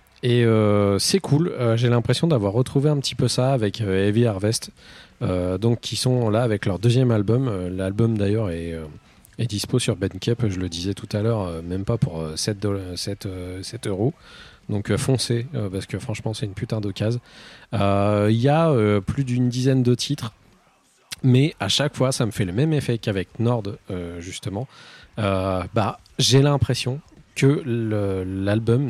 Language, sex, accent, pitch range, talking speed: French, male, French, 100-125 Hz, 190 wpm